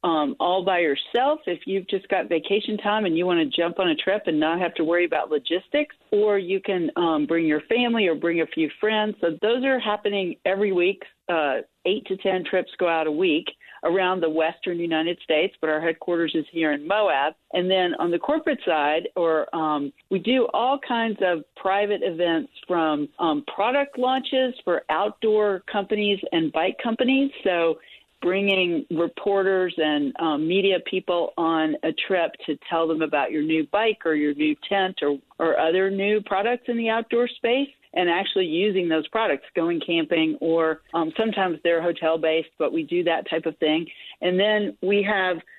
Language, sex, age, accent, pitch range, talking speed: English, female, 50-69, American, 165-205 Hz, 185 wpm